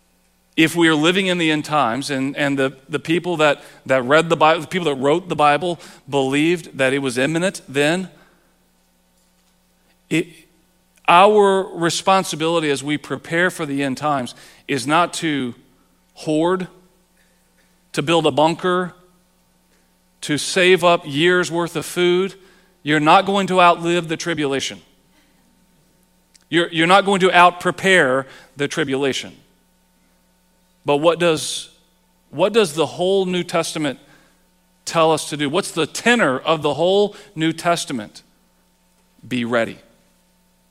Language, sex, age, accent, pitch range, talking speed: English, male, 40-59, American, 110-180 Hz, 135 wpm